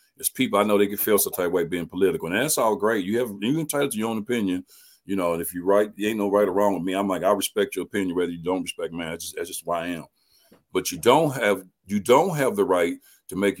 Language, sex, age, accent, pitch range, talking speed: English, male, 50-69, American, 95-155 Hz, 295 wpm